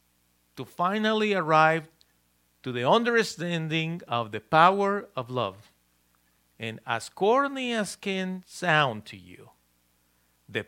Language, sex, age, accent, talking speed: English, male, 50-69, Mexican, 110 wpm